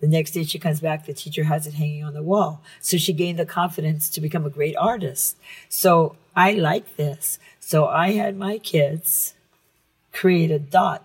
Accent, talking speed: American, 195 wpm